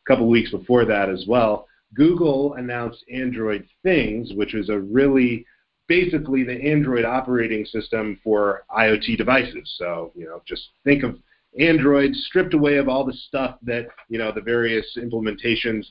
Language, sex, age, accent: English, male, 30-49, American